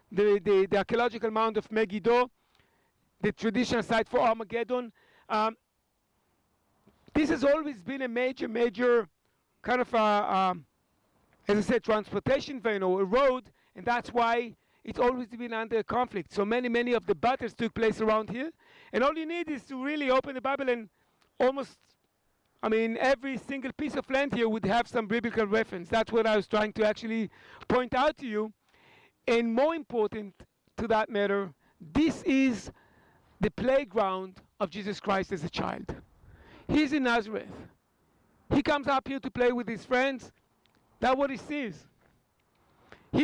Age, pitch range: 60-79, 215-270 Hz